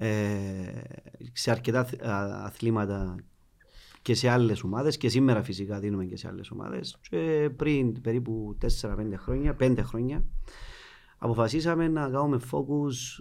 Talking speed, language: 115 wpm, Greek